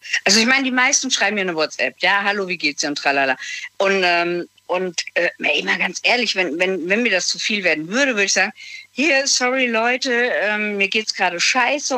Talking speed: 215 wpm